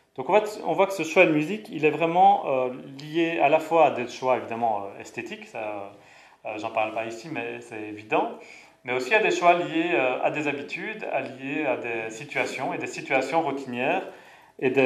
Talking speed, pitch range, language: 220 wpm, 120-155 Hz, French